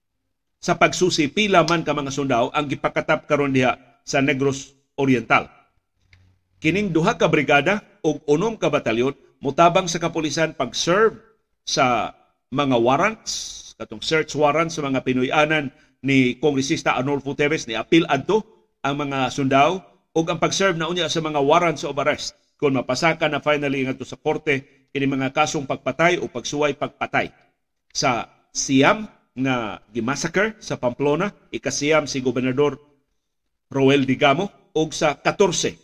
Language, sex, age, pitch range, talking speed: Filipino, male, 50-69, 130-160 Hz, 140 wpm